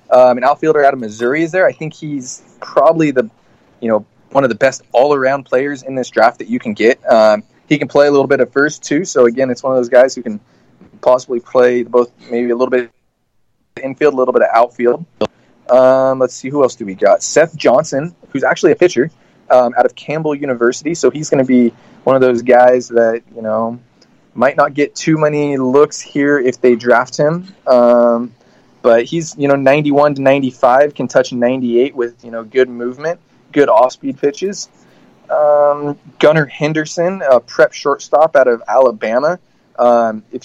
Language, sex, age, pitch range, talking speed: English, male, 20-39, 120-150 Hz, 195 wpm